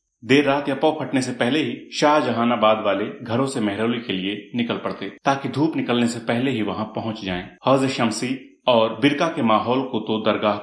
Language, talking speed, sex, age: Hindi, 200 wpm, male, 30-49